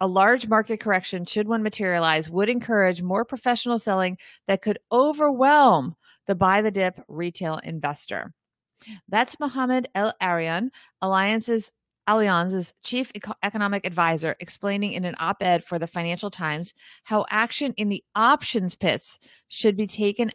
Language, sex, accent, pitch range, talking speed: English, female, American, 185-230 Hz, 130 wpm